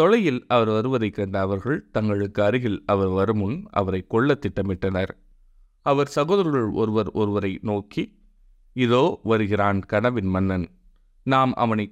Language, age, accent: Tamil, 30-49, native